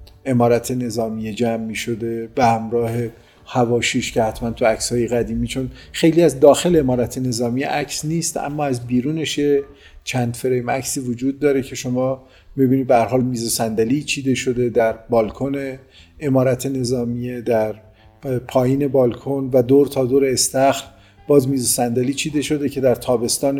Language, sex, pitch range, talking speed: Persian, male, 120-140 Hz, 155 wpm